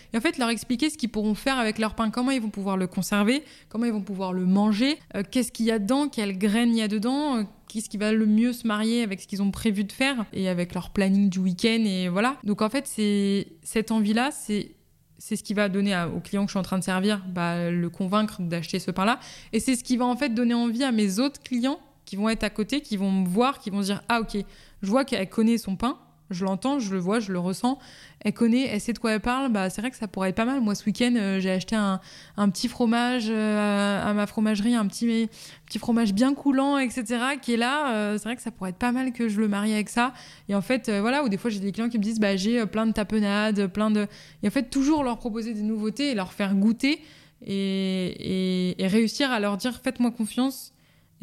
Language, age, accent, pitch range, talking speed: French, 20-39, French, 200-240 Hz, 275 wpm